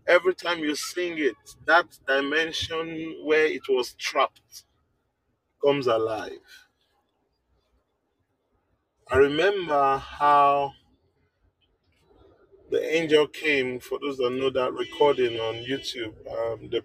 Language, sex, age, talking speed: English, male, 30-49, 105 wpm